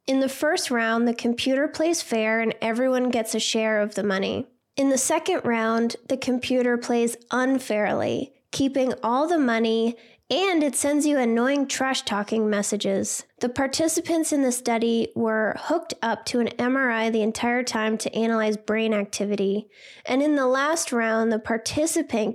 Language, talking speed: English, 160 wpm